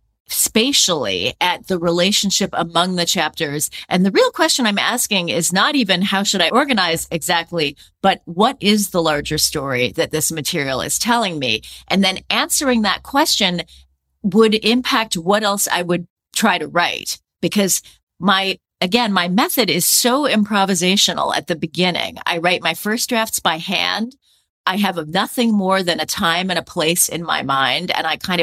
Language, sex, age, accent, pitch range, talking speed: English, female, 40-59, American, 170-220 Hz, 170 wpm